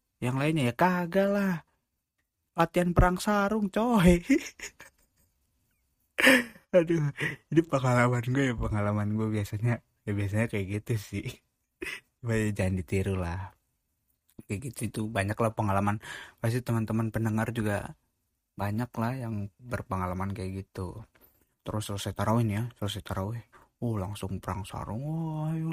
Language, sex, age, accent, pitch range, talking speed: Indonesian, male, 20-39, native, 100-125 Hz, 125 wpm